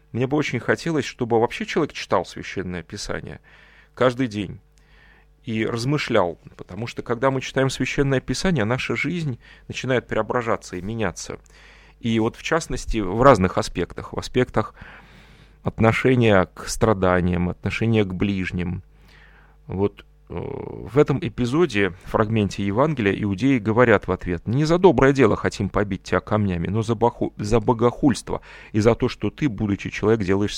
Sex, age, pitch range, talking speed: male, 30-49, 100-125 Hz, 140 wpm